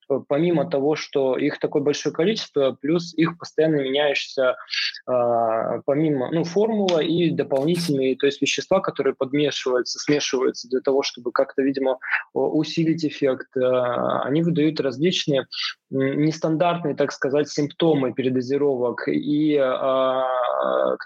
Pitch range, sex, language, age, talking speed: 130-155 Hz, male, Russian, 20-39, 115 wpm